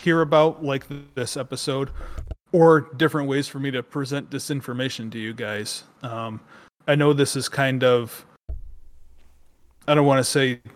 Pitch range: 120-145 Hz